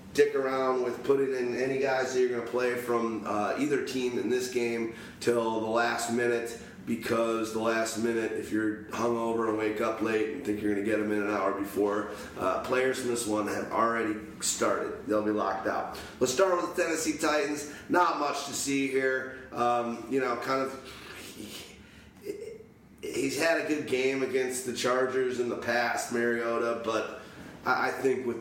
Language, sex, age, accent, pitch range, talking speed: English, male, 30-49, American, 110-130 Hz, 190 wpm